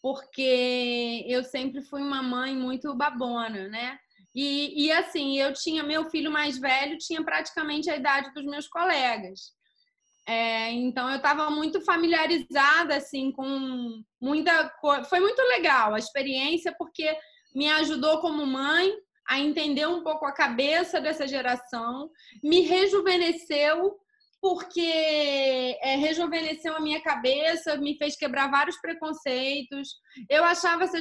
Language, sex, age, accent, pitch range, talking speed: Portuguese, female, 20-39, Brazilian, 265-325 Hz, 130 wpm